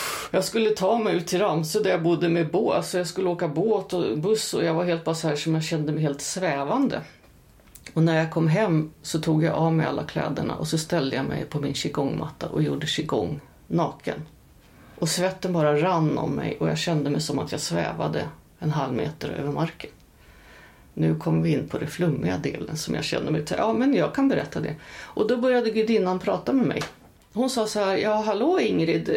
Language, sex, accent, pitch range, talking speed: Swedish, female, native, 155-205 Hz, 220 wpm